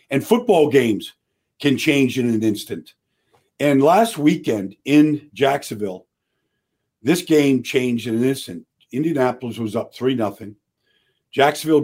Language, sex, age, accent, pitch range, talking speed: English, male, 50-69, American, 115-150 Hz, 125 wpm